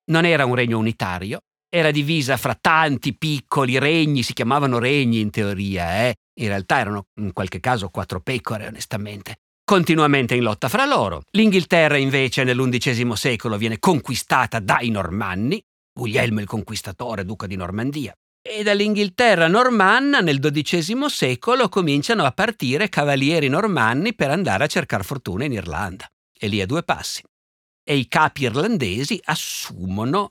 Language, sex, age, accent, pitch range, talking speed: Italian, male, 50-69, native, 105-160 Hz, 145 wpm